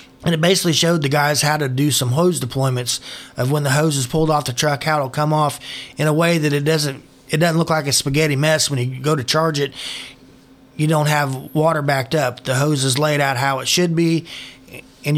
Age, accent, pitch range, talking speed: 30-49, American, 130-155 Hz, 235 wpm